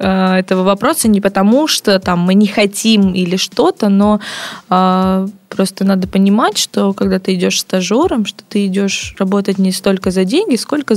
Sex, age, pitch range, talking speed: female, 20-39, 185-225 Hz, 160 wpm